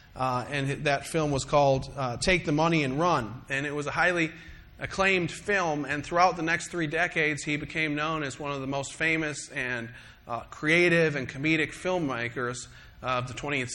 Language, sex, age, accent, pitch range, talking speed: English, male, 40-59, American, 135-165 Hz, 190 wpm